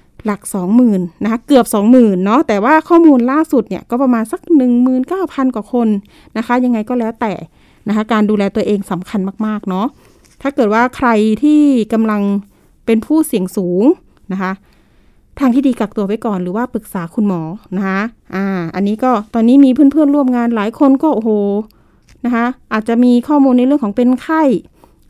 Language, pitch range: Thai, 215-275 Hz